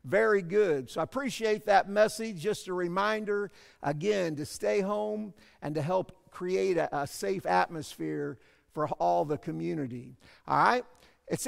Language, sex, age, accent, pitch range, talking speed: English, male, 50-69, American, 160-210 Hz, 150 wpm